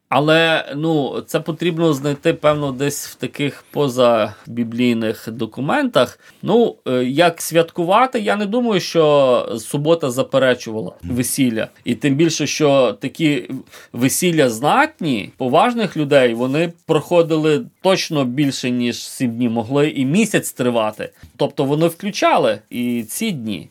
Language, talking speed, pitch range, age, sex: Ukrainian, 120 wpm, 125-170 Hz, 30-49, male